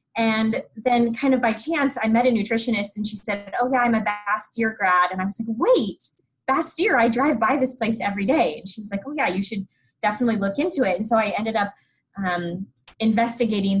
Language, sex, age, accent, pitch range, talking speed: English, female, 20-39, American, 185-235 Hz, 220 wpm